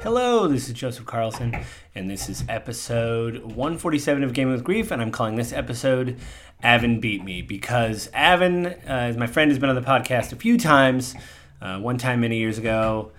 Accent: American